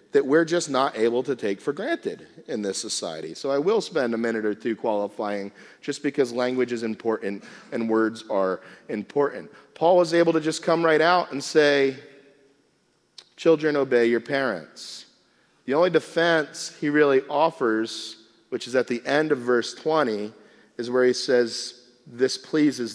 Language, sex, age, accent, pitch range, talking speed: English, male, 40-59, American, 120-165 Hz, 165 wpm